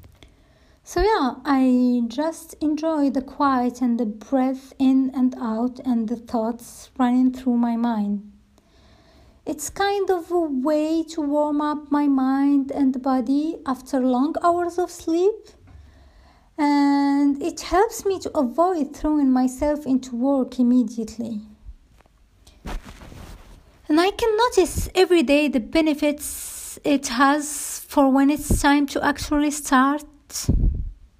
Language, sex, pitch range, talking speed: English, female, 240-305 Hz, 125 wpm